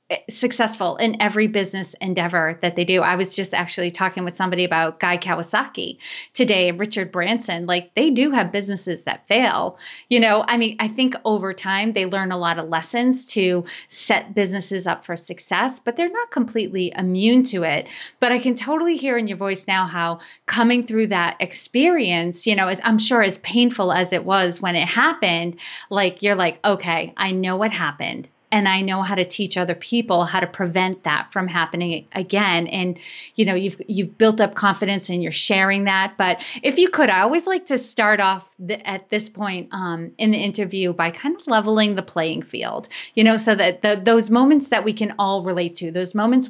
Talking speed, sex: 205 wpm, female